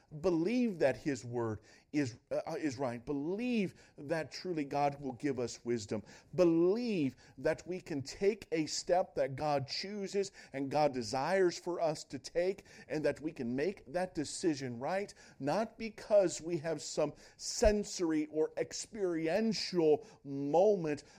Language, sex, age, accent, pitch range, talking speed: English, male, 50-69, American, 125-180 Hz, 140 wpm